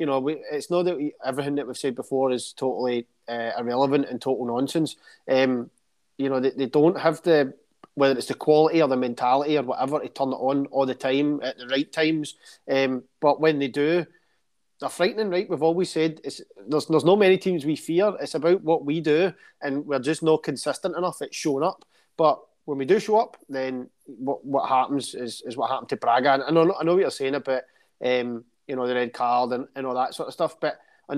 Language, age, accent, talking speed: English, 30-49, British, 230 wpm